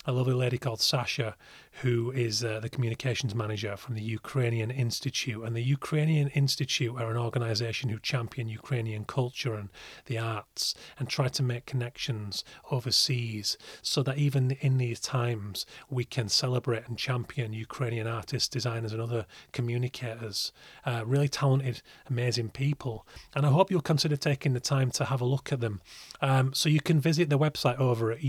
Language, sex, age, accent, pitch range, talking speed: English, male, 30-49, British, 115-140 Hz, 170 wpm